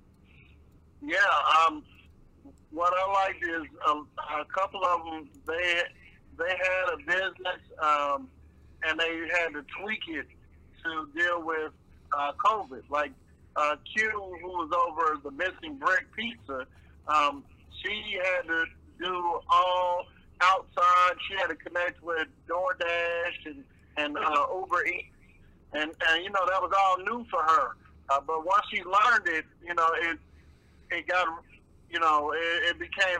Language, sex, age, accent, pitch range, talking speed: English, male, 50-69, American, 150-185 Hz, 150 wpm